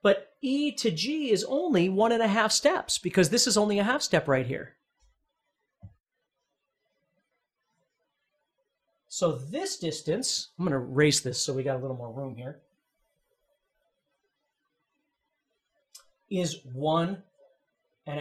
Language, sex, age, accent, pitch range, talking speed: English, male, 40-59, American, 190-280 Hz, 125 wpm